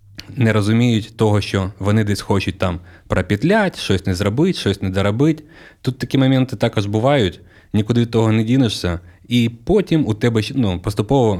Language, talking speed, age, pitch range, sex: Ukrainian, 165 wpm, 30-49, 100-120 Hz, male